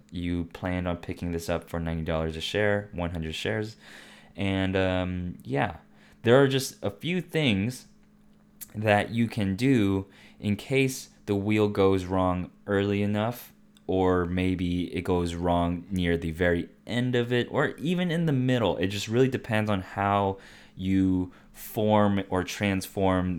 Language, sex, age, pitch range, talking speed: English, male, 20-39, 85-100 Hz, 150 wpm